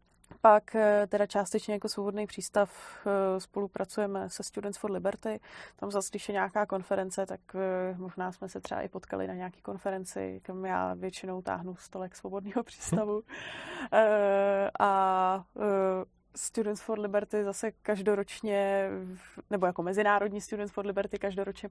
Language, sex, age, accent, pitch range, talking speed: Czech, female, 20-39, native, 190-205 Hz, 130 wpm